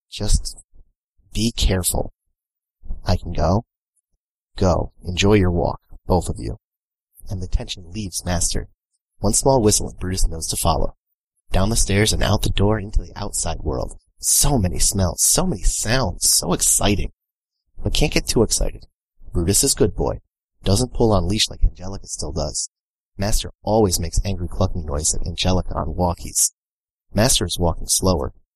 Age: 30-49